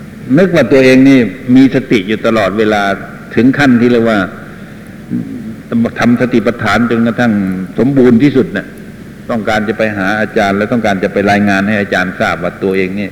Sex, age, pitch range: male, 60-79, 95-115 Hz